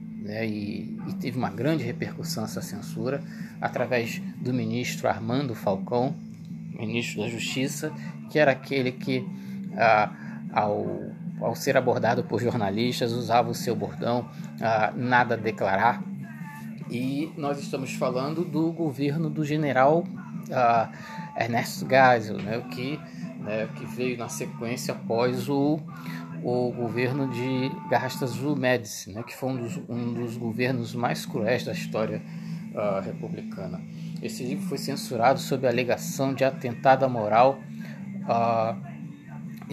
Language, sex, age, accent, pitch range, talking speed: Portuguese, male, 20-39, Brazilian, 120-180 Hz, 130 wpm